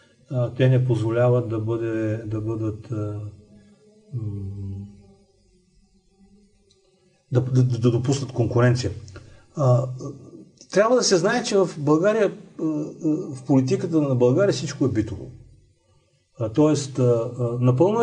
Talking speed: 95 wpm